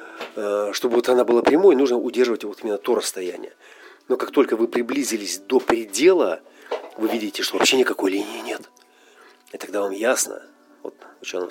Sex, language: male, Russian